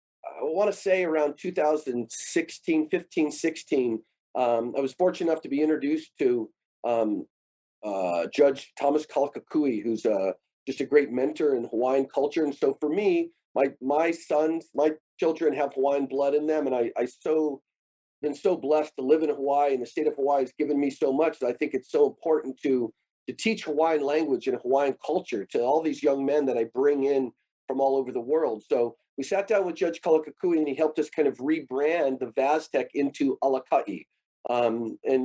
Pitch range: 130-160 Hz